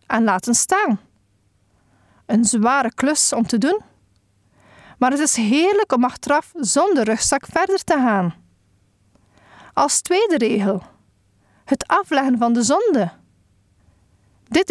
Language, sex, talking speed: Dutch, female, 120 wpm